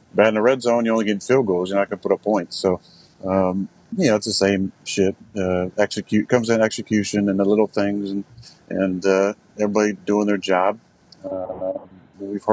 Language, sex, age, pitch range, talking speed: English, male, 40-59, 95-110 Hz, 205 wpm